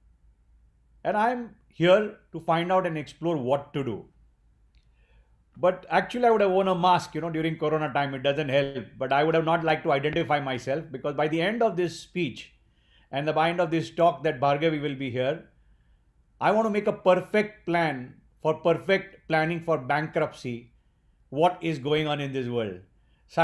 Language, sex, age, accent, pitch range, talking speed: English, male, 50-69, Indian, 130-170 Hz, 190 wpm